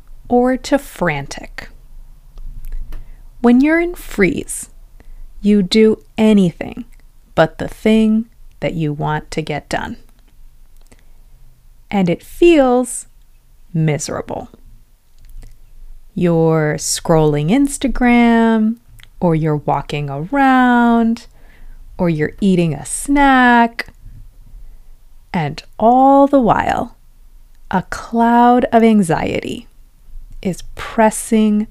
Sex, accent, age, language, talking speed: female, American, 30-49, English, 85 wpm